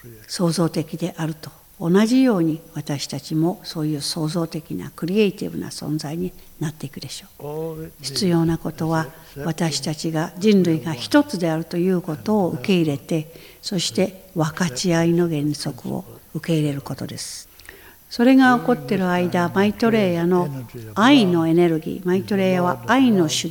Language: Japanese